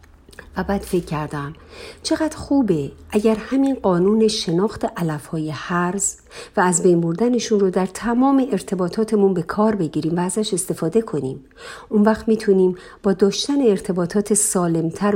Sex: female